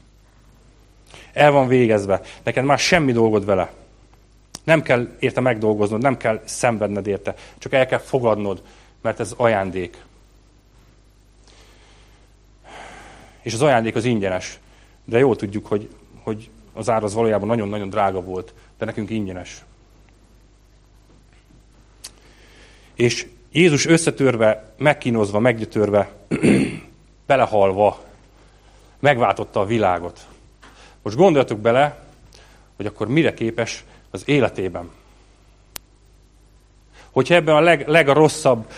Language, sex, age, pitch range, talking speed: Hungarian, male, 40-59, 105-125 Hz, 100 wpm